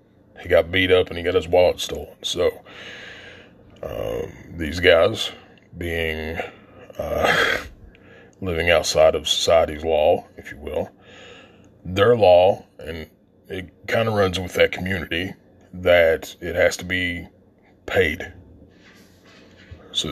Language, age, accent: English, 30-49, American